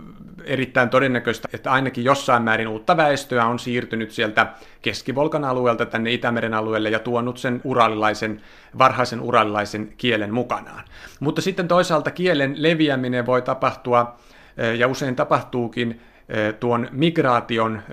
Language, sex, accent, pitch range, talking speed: Finnish, male, native, 120-145 Hz, 120 wpm